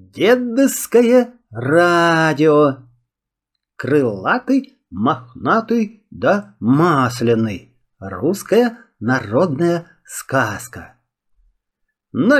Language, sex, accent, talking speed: Russian, male, native, 50 wpm